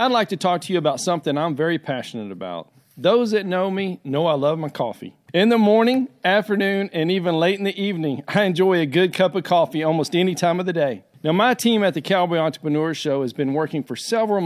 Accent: American